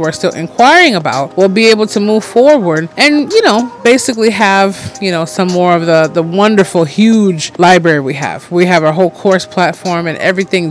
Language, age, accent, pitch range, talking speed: English, 30-49, American, 175-220 Hz, 200 wpm